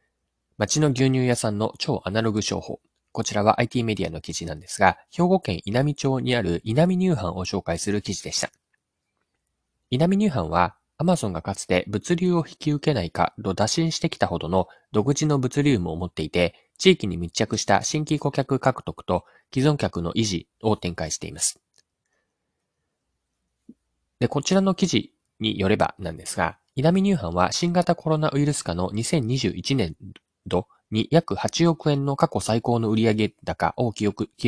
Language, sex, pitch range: Japanese, male, 95-145 Hz